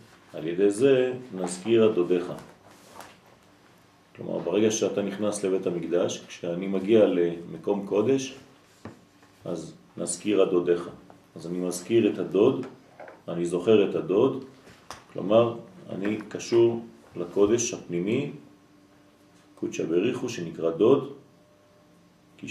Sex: male